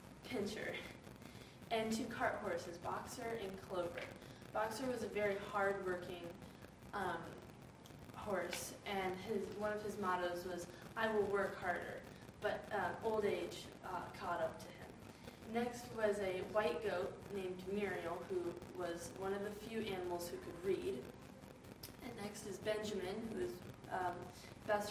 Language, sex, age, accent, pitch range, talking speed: English, female, 20-39, American, 180-210 Hz, 145 wpm